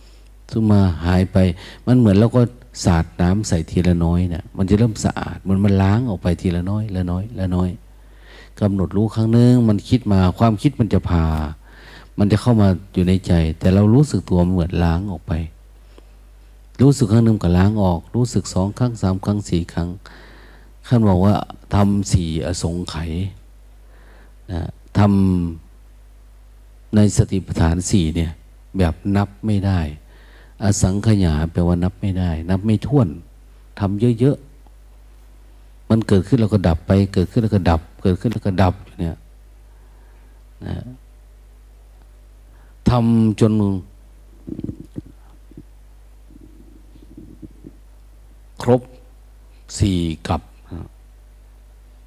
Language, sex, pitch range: Thai, male, 90-110 Hz